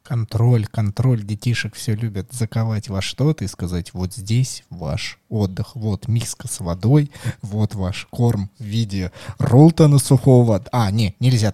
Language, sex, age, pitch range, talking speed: Russian, male, 20-39, 110-140 Hz, 145 wpm